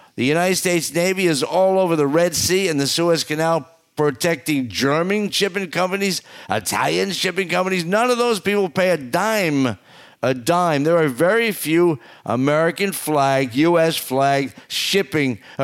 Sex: male